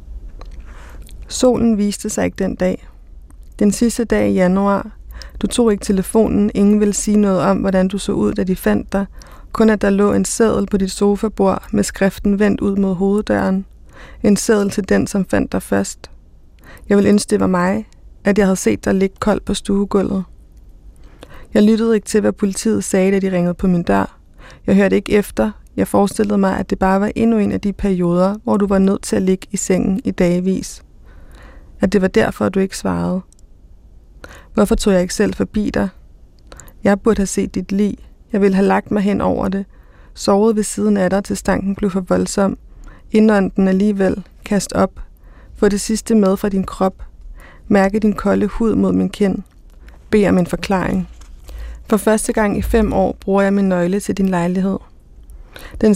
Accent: native